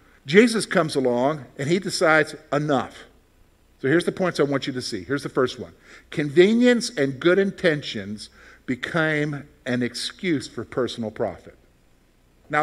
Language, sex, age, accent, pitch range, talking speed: English, male, 50-69, American, 145-245 Hz, 145 wpm